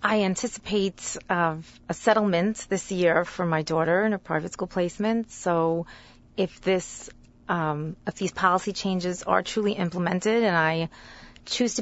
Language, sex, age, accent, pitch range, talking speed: English, female, 30-49, American, 165-200 Hz, 150 wpm